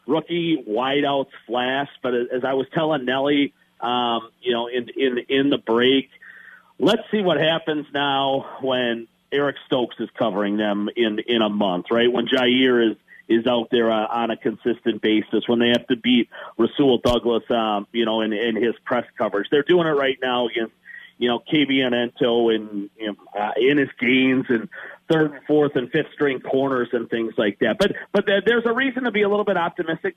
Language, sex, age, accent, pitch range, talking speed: English, male, 40-59, American, 120-155 Hz, 190 wpm